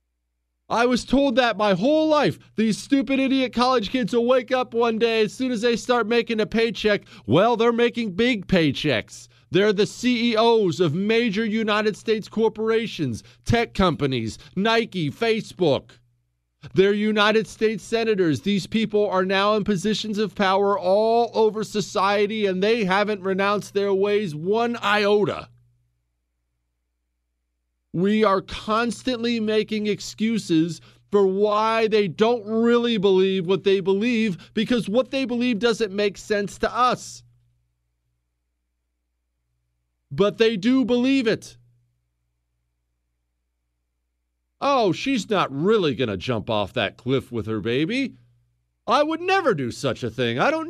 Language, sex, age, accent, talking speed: English, male, 40-59, American, 135 wpm